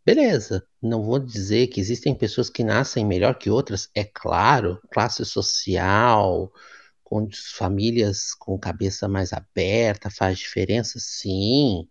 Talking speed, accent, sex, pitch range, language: 125 wpm, Brazilian, male, 100-125 Hz, Portuguese